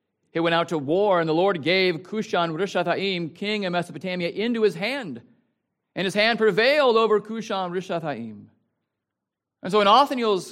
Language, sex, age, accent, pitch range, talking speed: English, male, 40-59, American, 155-215 Hz, 160 wpm